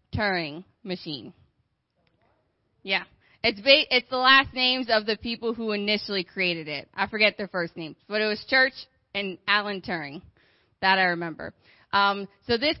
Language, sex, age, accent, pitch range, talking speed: English, female, 20-39, American, 190-230 Hz, 155 wpm